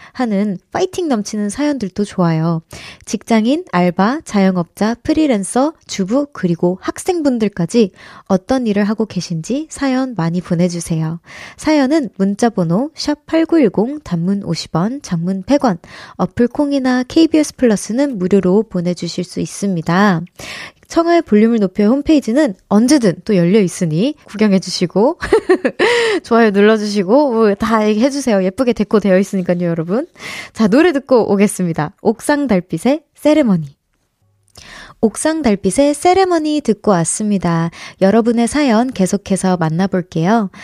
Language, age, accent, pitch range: Korean, 20-39, native, 195-285 Hz